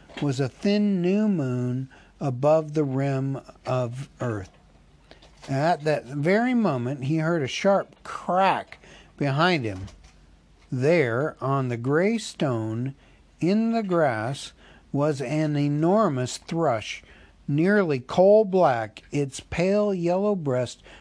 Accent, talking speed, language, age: American, 115 wpm, English, 60-79